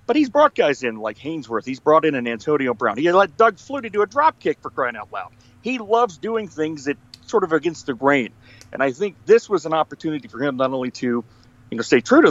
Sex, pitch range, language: male, 130-205 Hz, English